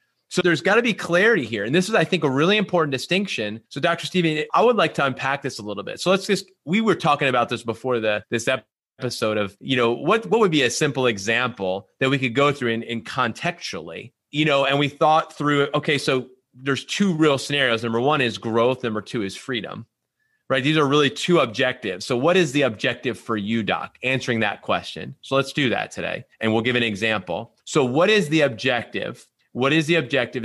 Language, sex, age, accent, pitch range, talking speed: English, male, 30-49, American, 115-155 Hz, 225 wpm